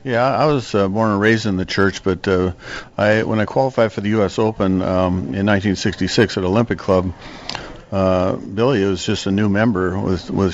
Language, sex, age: English, male, 50-69